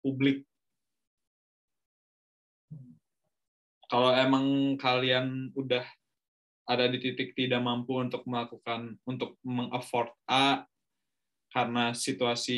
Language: Indonesian